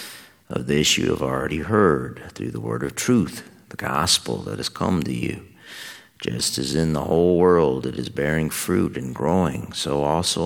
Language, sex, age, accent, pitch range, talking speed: English, male, 50-69, American, 65-80 Hz, 185 wpm